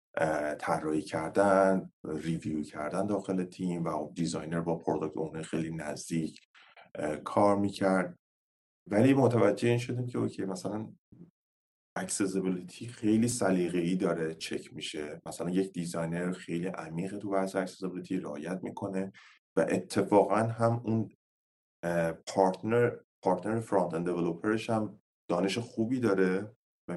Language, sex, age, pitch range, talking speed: Persian, male, 30-49, 85-100 Hz, 115 wpm